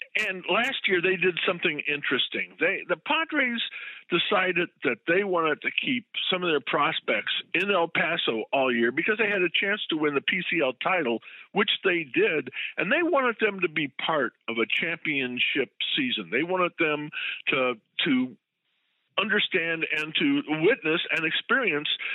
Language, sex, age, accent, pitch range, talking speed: English, male, 50-69, American, 130-205 Hz, 165 wpm